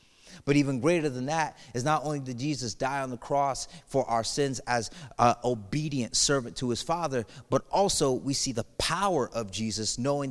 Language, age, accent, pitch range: English, 30-49, American, 115-145 Hz